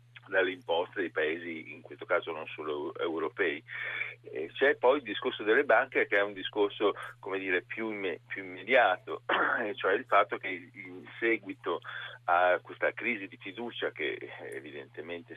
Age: 40-59